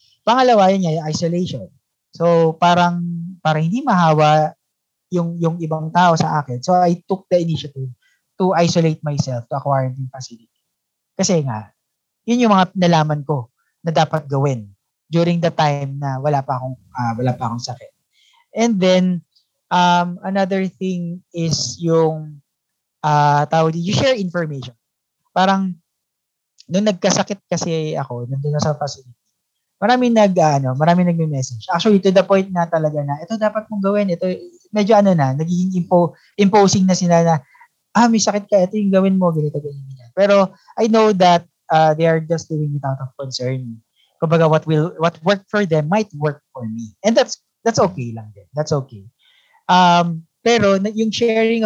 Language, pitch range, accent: English, 145-195 Hz, Filipino